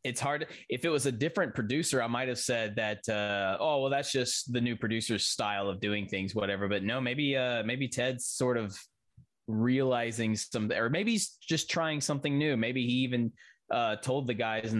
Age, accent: 20-39, American